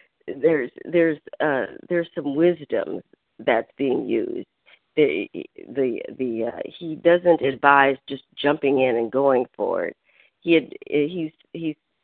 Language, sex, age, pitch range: English, female, 50-69, 135-175 Hz